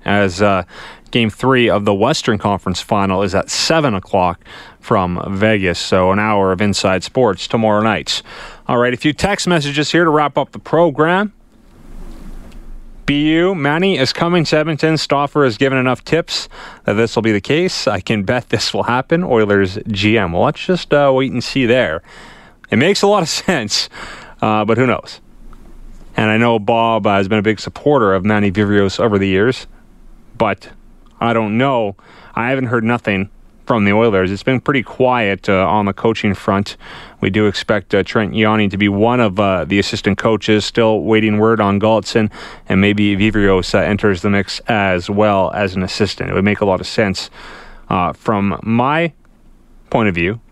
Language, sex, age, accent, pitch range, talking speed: English, male, 30-49, American, 100-125 Hz, 190 wpm